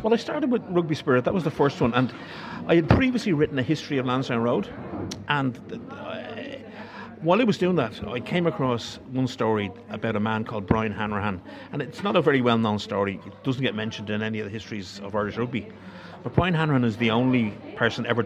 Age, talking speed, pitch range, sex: 50-69, 215 wpm, 110-145 Hz, male